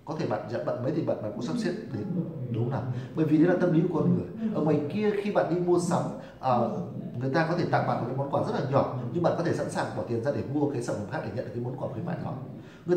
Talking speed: 325 wpm